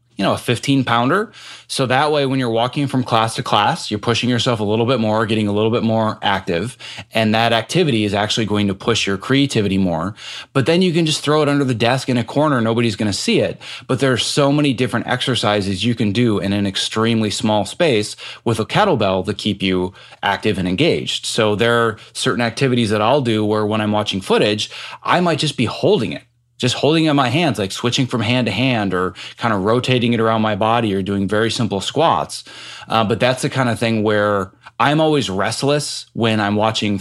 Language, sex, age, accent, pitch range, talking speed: English, male, 20-39, American, 105-130 Hz, 225 wpm